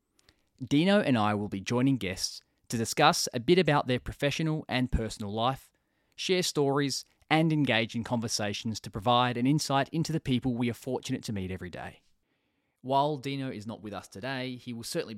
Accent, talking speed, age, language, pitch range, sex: Australian, 185 wpm, 20-39, English, 95-130 Hz, male